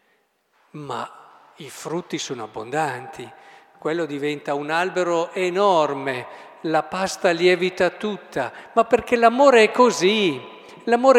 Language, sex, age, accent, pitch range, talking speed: Italian, male, 50-69, native, 145-220 Hz, 105 wpm